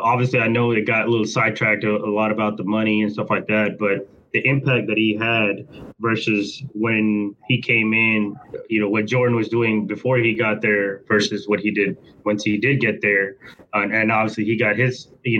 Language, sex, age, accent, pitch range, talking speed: English, male, 20-39, American, 110-135 Hz, 215 wpm